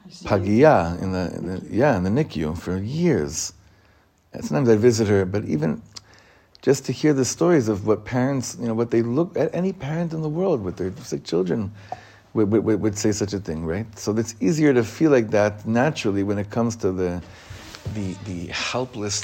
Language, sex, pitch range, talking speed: English, male, 100-130 Hz, 195 wpm